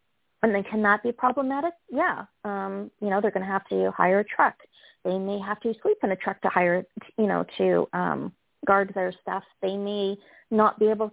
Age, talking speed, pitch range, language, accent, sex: 30-49, 215 wpm, 190-225 Hz, English, American, female